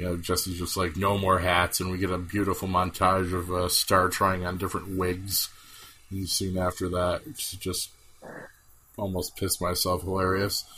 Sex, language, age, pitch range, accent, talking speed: male, English, 30-49, 90-105 Hz, American, 175 wpm